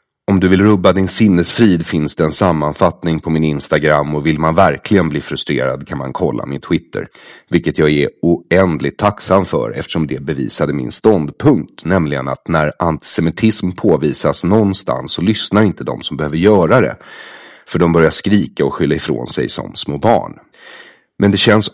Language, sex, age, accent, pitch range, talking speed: English, male, 30-49, Swedish, 75-105 Hz, 175 wpm